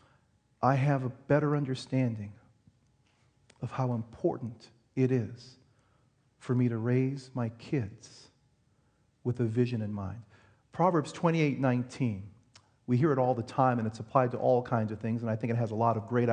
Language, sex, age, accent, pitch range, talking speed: English, male, 40-59, American, 115-135 Hz, 175 wpm